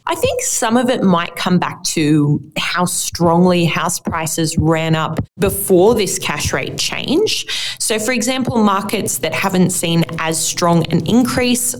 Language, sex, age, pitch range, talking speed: English, female, 20-39, 160-205 Hz, 160 wpm